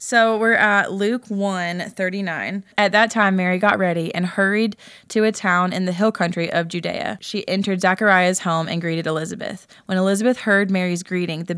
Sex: female